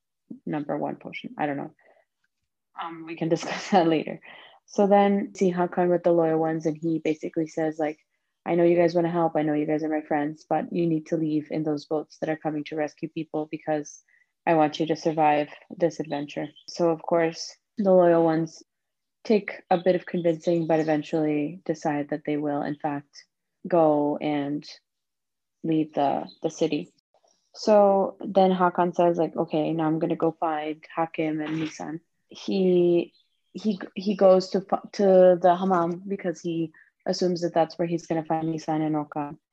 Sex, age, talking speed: female, 20-39, 180 wpm